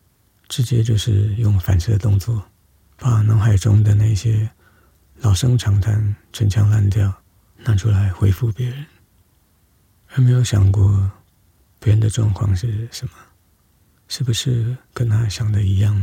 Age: 50-69